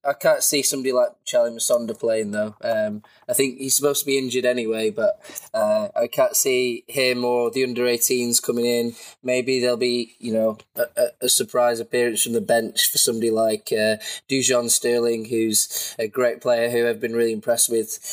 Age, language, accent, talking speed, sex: 20-39, English, British, 190 wpm, male